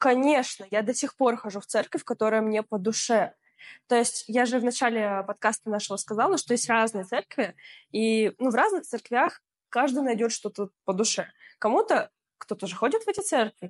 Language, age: Russian, 20-39